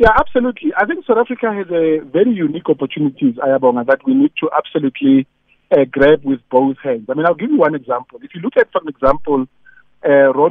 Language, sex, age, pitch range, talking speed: English, male, 50-69, 140-195 Hz, 210 wpm